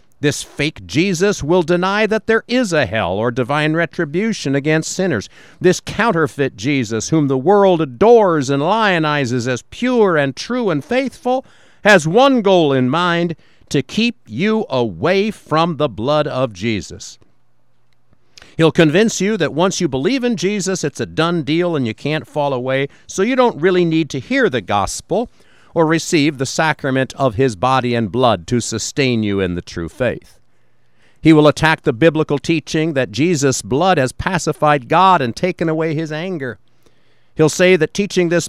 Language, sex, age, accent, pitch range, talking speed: English, male, 50-69, American, 130-180 Hz, 170 wpm